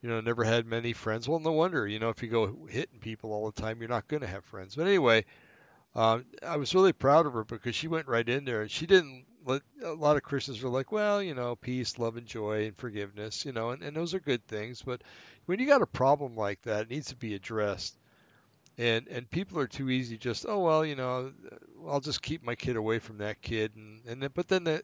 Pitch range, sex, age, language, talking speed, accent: 110-140 Hz, male, 60-79, English, 255 wpm, American